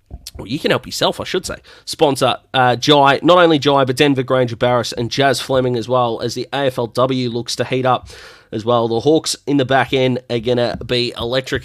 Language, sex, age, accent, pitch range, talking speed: English, male, 30-49, Australian, 110-145 Hz, 220 wpm